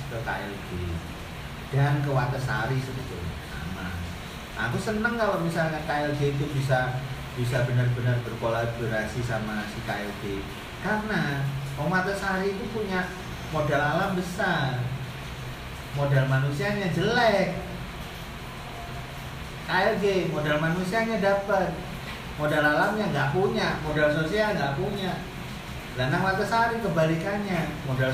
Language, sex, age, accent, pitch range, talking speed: Indonesian, male, 40-59, native, 125-180 Hz, 100 wpm